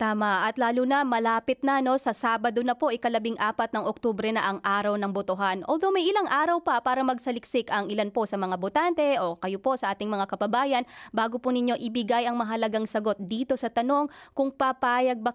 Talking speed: 205 wpm